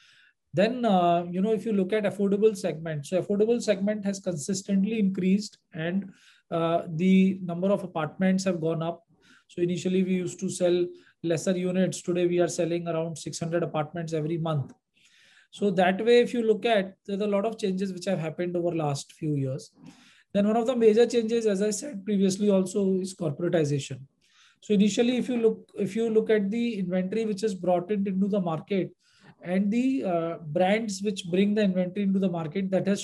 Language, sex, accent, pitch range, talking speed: English, male, Indian, 170-205 Hz, 185 wpm